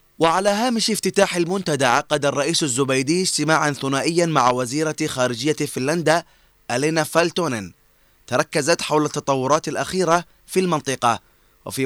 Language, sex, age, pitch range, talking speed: Arabic, male, 20-39, 140-170 Hz, 110 wpm